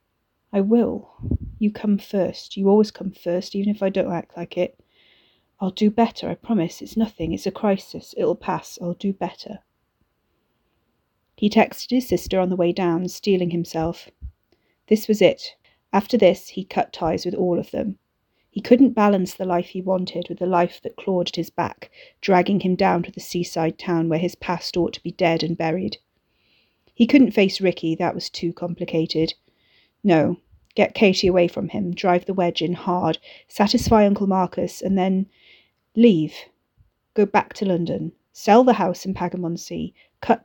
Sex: female